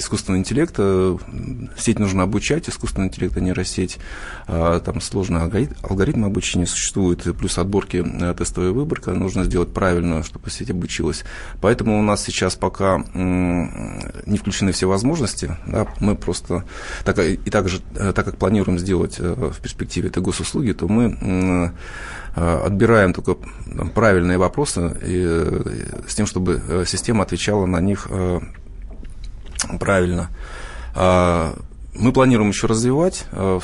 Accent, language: native, Russian